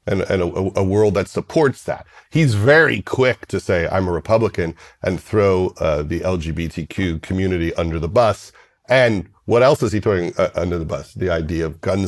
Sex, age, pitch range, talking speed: male, 50-69, 95-135 Hz, 195 wpm